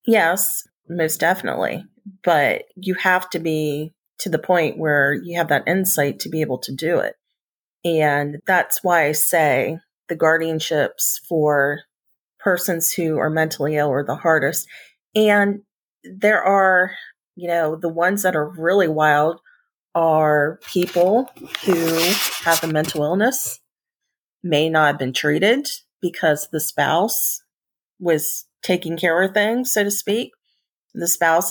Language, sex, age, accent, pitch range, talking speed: English, female, 30-49, American, 155-200 Hz, 140 wpm